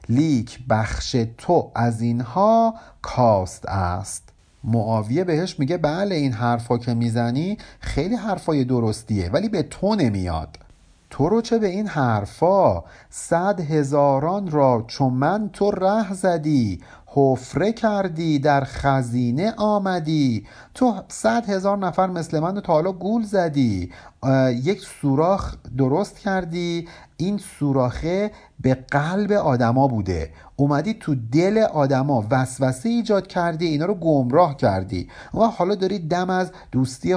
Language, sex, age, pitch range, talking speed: Persian, male, 50-69, 115-185 Hz, 125 wpm